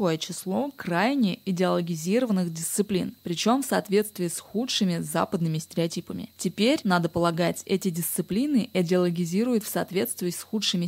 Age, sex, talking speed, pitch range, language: 20-39, female, 115 wpm, 180-220 Hz, Russian